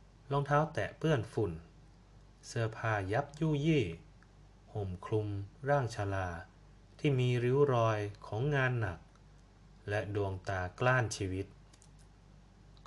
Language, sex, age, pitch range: Thai, male, 20-39, 95-120 Hz